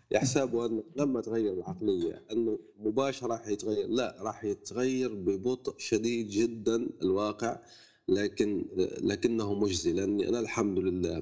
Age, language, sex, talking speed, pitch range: 30-49, Arabic, male, 120 wpm, 105-140 Hz